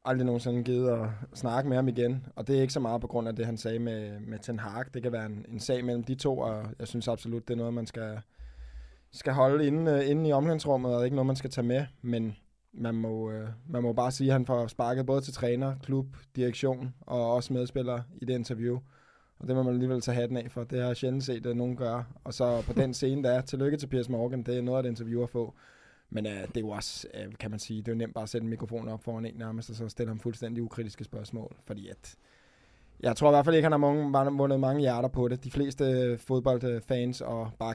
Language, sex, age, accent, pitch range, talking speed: Danish, male, 20-39, native, 115-130 Hz, 260 wpm